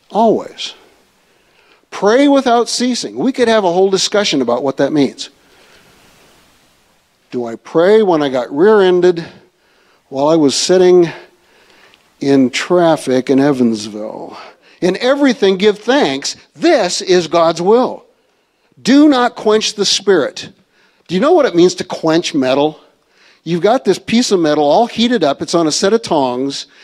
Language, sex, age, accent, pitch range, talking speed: English, male, 60-79, American, 160-240 Hz, 150 wpm